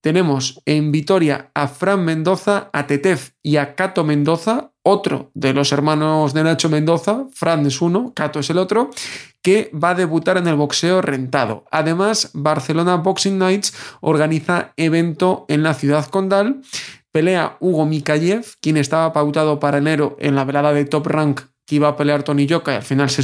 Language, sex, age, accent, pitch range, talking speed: Spanish, male, 20-39, Spanish, 150-185 Hz, 175 wpm